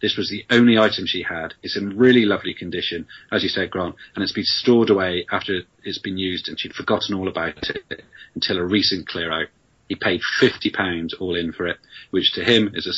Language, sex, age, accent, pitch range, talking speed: English, male, 30-49, British, 90-105 Hz, 215 wpm